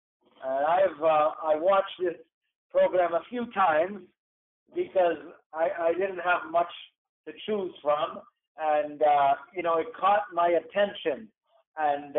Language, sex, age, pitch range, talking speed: English, male, 50-69, 160-195 Hz, 140 wpm